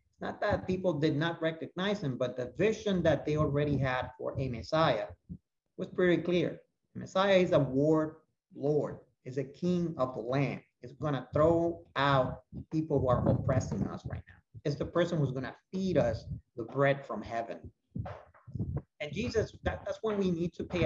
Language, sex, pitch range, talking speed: English, male, 130-180 Hz, 175 wpm